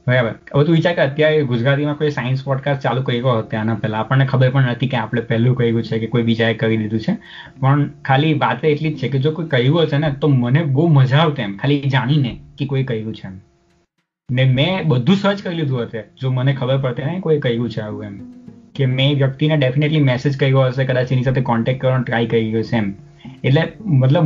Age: 20-39